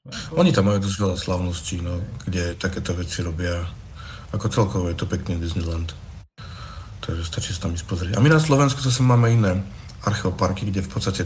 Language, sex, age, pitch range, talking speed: Slovak, male, 50-69, 85-100 Hz, 180 wpm